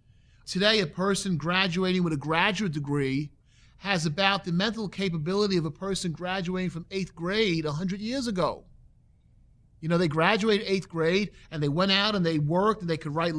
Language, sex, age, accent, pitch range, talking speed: English, male, 30-49, American, 150-200 Hz, 185 wpm